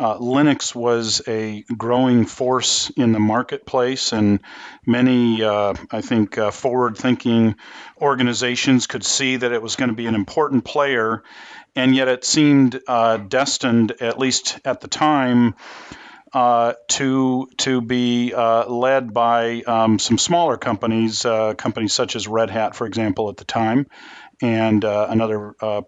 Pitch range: 110-125 Hz